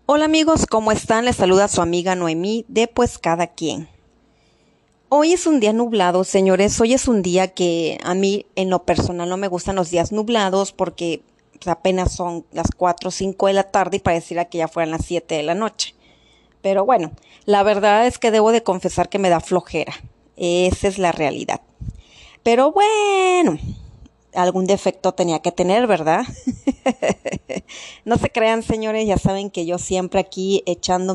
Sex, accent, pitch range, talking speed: female, Mexican, 180-220 Hz, 175 wpm